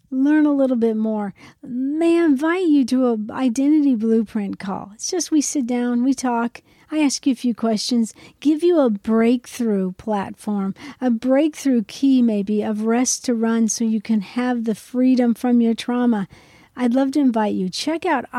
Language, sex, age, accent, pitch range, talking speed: English, female, 50-69, American, 220-270 Hz, 185 wpm